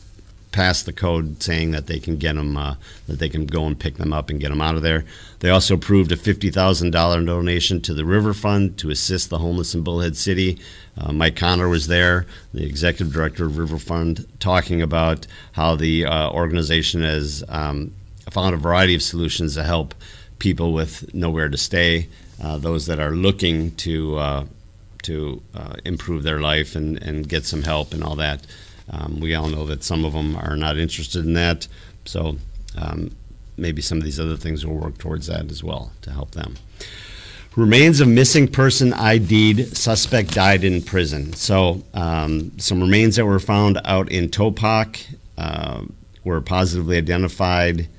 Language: English